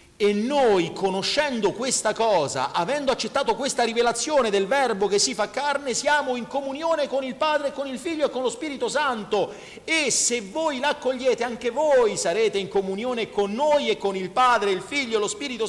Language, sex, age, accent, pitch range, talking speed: Italian, male, 40-59, native, 185-270 Hz, 185 wpm